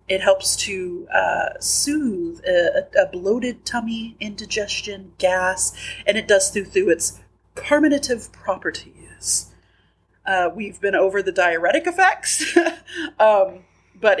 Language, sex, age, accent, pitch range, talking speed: English, female, 30-49, American, 185-290 Hz, 120 wpm